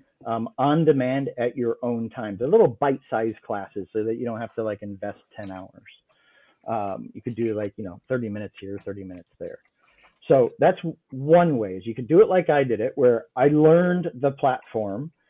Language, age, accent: English, 40-59, American